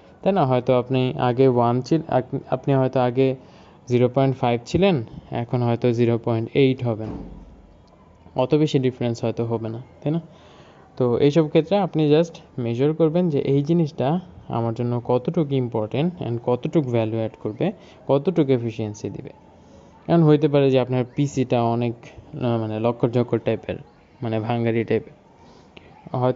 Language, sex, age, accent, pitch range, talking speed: Bengali, male, 20-39, native, 115-145 Hz, 90 wpm